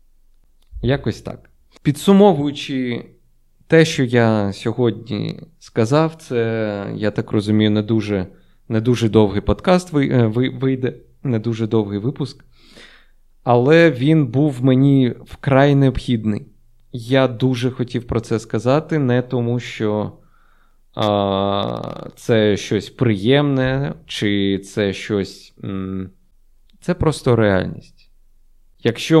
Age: 20-39